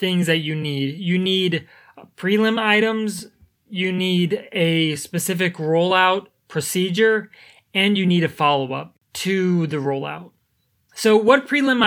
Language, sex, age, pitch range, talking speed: English, male, 20-39, 155-190 Hz, 125 wpm